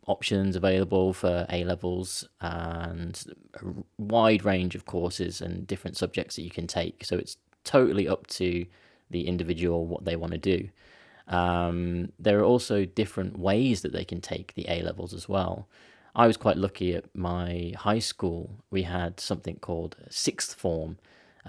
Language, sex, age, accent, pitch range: Japanese, male, 20-39, British, 85-100 Hz